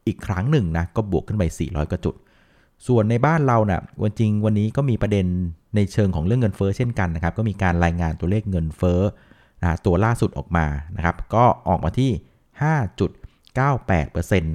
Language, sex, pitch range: Thai, male, 85-110 Hz